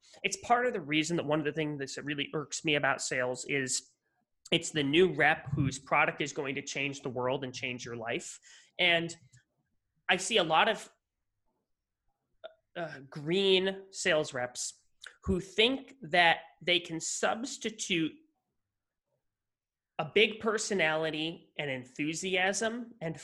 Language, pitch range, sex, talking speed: English, 145-195 Hz, male, 140 wpm